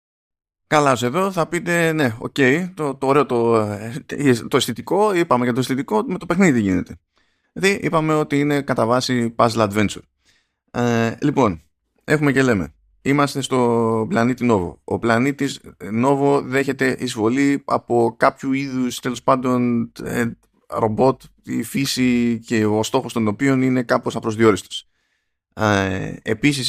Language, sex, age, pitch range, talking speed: Greek, male, 20-39, 105-140 Hz, 135 wpm